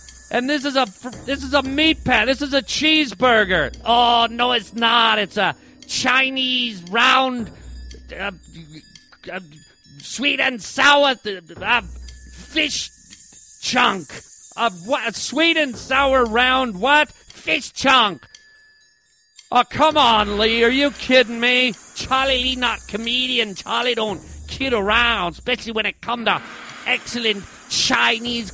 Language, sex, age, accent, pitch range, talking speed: English, male, 40-59, American, 205-265 Hz, 135 wpm